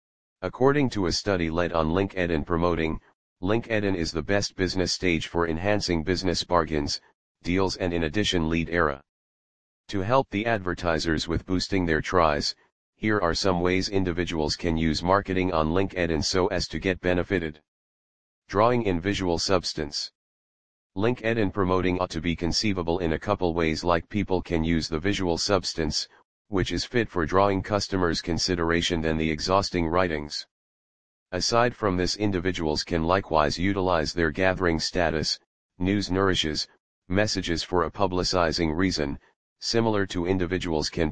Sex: male